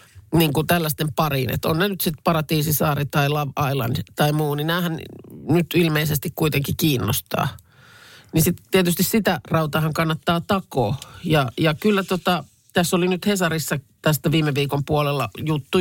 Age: 50-69